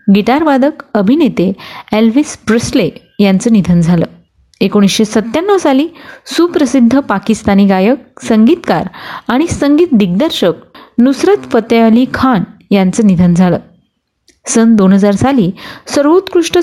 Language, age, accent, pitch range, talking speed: Marathi, 30-49, native, 205-275 Hz, 100 wpm